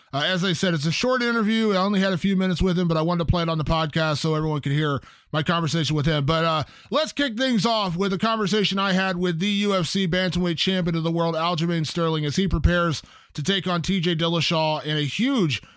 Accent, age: American, 20-39